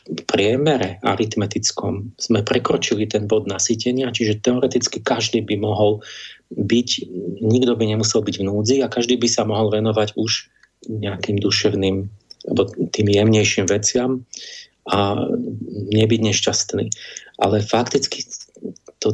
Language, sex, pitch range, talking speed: Slovak, male, 105-115 Hz, 120 wpm